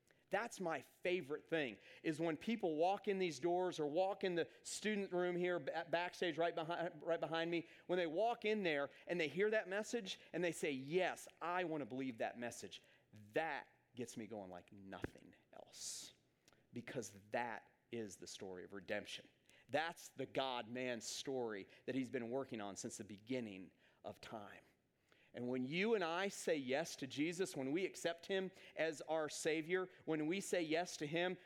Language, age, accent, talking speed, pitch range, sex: English, 40-59, American, 180 wpm, 120-175 Hz, male